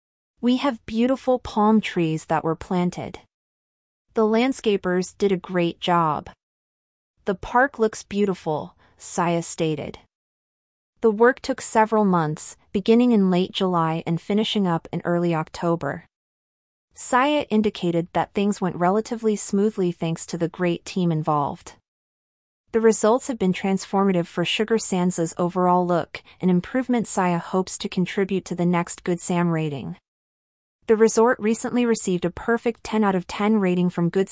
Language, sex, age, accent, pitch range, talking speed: English, female, 30-49, American, 170-220 Hz, 145 wpm